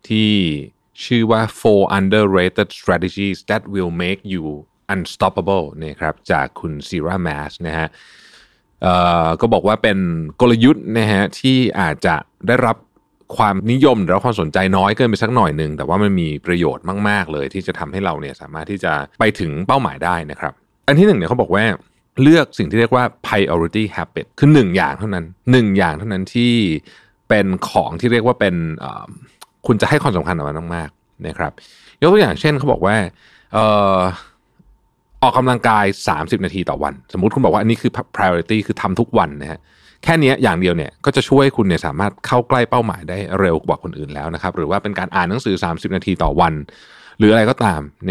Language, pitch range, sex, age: Thai, 85-115 Hz, male, 20-39